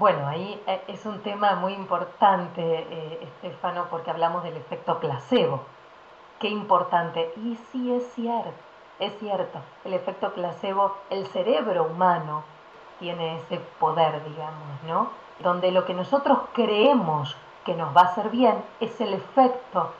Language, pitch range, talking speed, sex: Spanish, 165-205 Hz, 140 wpm, female